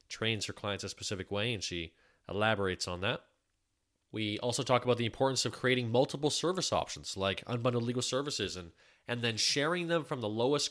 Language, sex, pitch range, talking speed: English, male, 100-125 Hz, 190 wpm